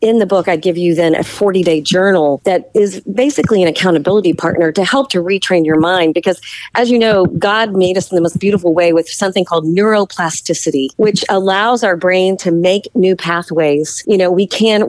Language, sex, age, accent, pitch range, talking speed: English, female, 40-59, American, 175-215 Hz, 200 wpm